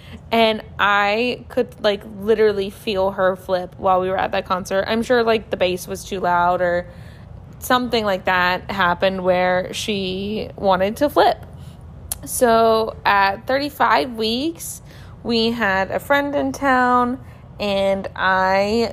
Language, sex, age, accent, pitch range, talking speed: English, female, 20-39, American, 190-230 Hz, 140 wpm